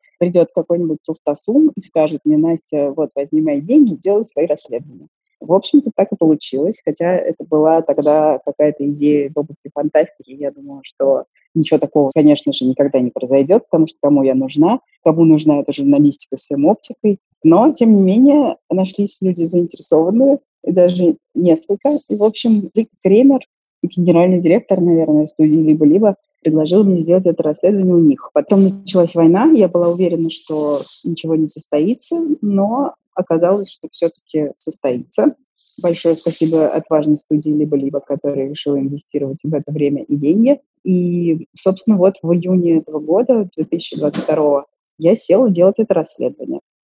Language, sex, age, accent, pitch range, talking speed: Russian, female, 20-39, native, 155-205 Hz, 150 wpm